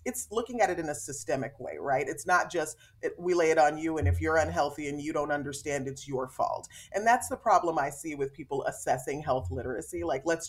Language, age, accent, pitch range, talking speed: English, 30-49, American, 140-195 Hz, 235 wpm